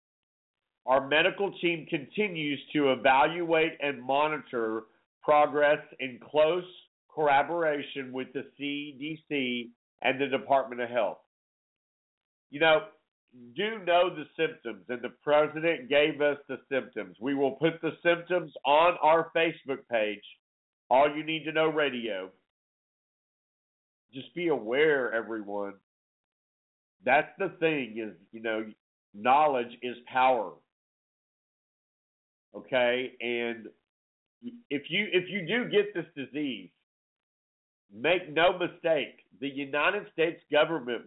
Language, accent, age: English, American, 50-69